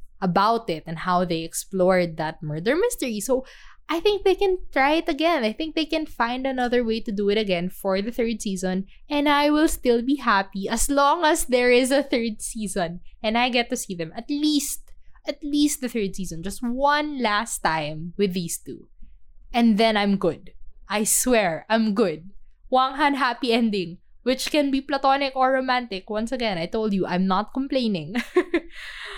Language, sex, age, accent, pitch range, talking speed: English, female, 20-39, Filipino, 210-275 Hz, 185 wpm